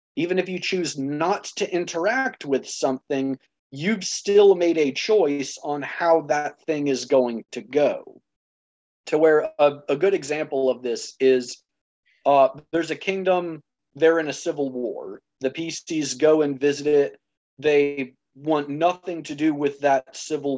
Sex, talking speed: male, 155 wpm